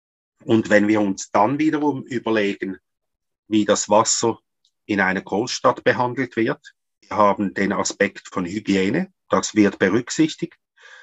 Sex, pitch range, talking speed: male, 100-120 Hz, 130 wpm